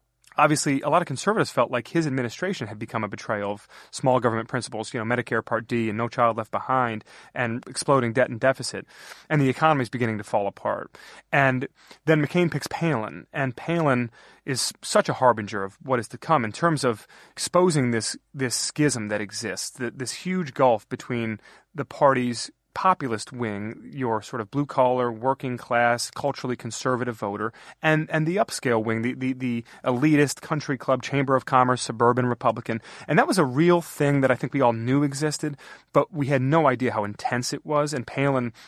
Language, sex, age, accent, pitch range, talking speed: English, male, 30-49, American, 120-145 Hz, 190 wpm